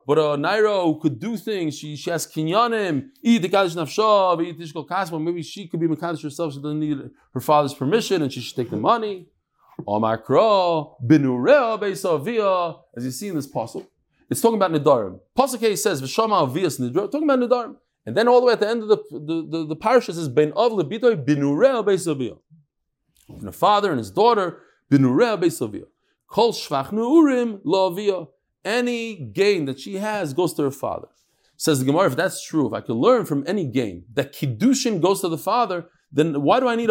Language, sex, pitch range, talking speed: English, male, 150-225 Hz, 165 wpm